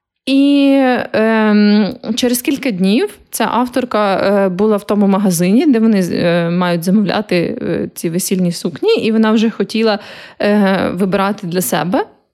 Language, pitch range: Ukrainian, 195-250 Hz